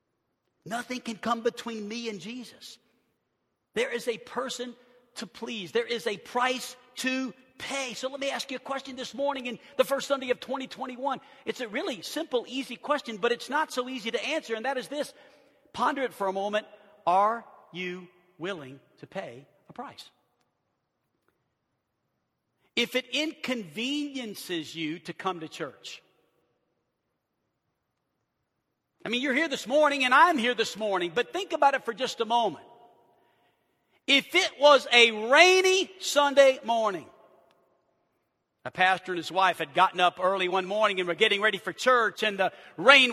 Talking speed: 165 wpm